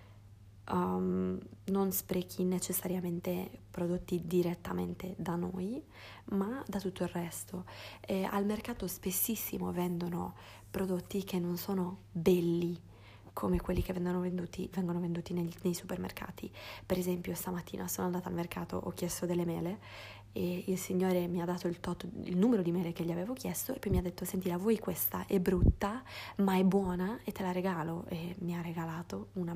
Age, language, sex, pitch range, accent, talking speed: 20-39, Italian, female, 165-185 Hz, native, 160 wpm